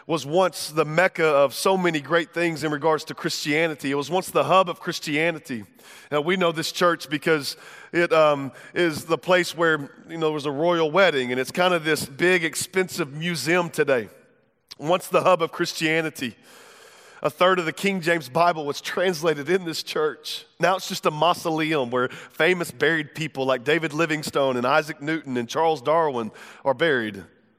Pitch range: 155-185 Hz